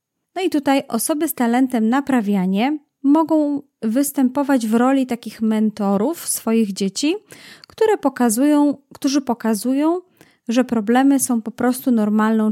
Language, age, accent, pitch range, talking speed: Polish, 30-49, native, 220-275 Hz, 110 wpm